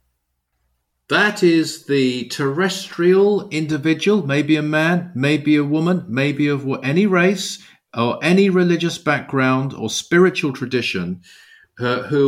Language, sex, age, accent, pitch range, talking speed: English, male, 50-69, British, 110-165 Hz, 115 wpm